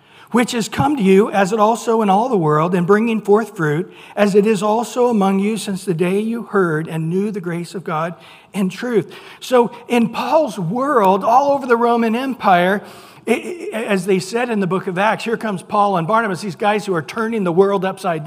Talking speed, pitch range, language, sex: 215 wpm, 160-210 Hz, English, male